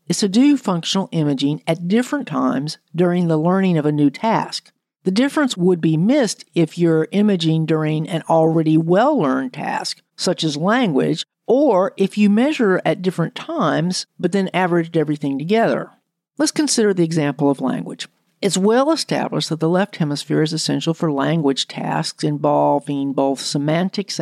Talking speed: 160 wpm